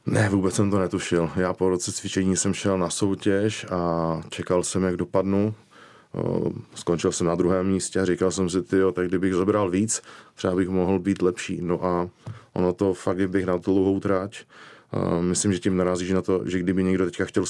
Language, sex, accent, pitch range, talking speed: Czech, male, native, 85-95 Hz, 195 wpm